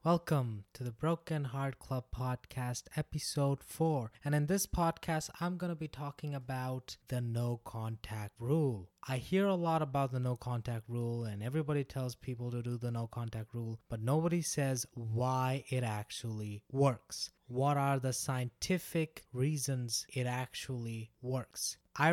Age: 20-39